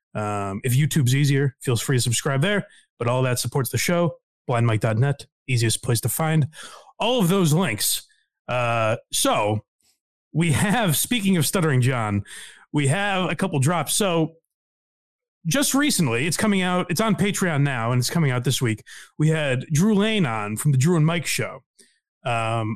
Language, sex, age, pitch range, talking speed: English, male, 30-49, 130-185 Hz, 170 wpm